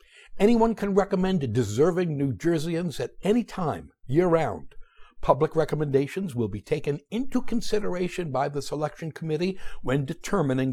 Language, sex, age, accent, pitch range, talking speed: English, male, 60-79, American, 125-200 Hz, 130 wpm